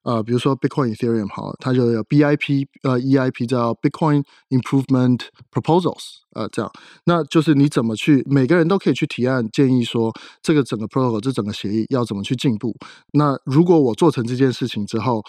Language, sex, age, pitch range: Chinese, male, 20-39, 115-145 Hz